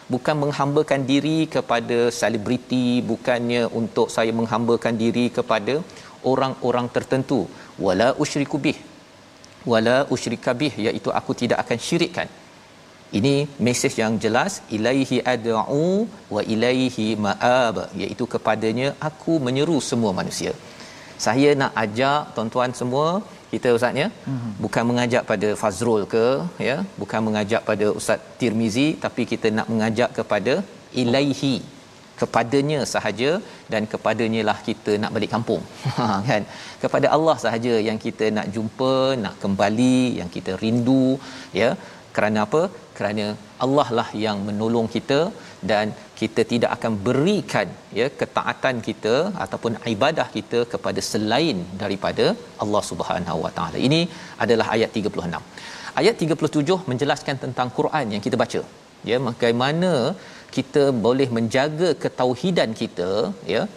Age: 40-59